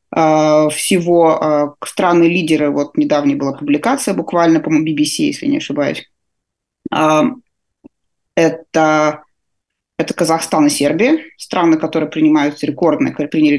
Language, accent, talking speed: Russian, native, 95 wpm